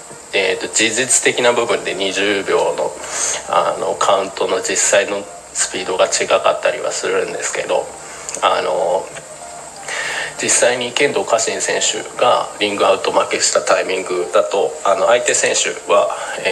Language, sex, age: Japanese, male, 20-39